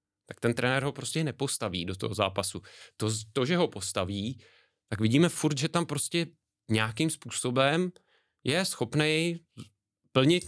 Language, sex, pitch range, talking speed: Czech, male, 100-135 Hz, 145 wpm